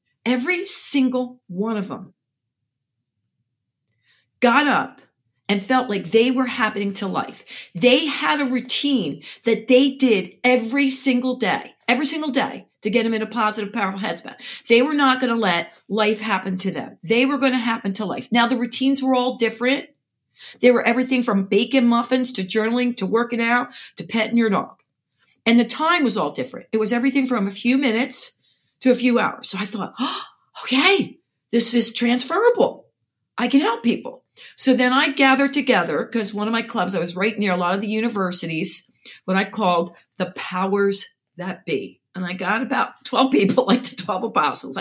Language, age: English, 40-59